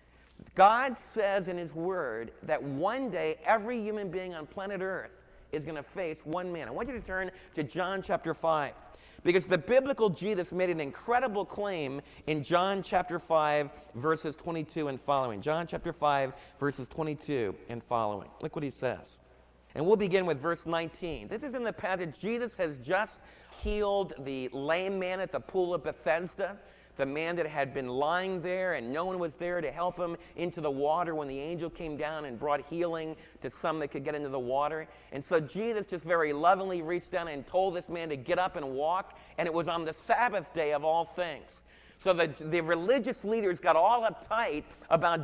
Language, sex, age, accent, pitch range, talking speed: English, male, 40-59, American, 155-200 Hz, 200 wpm